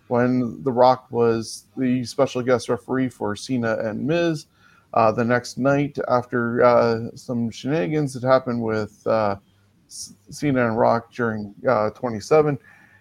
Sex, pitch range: male, 115-140 Hz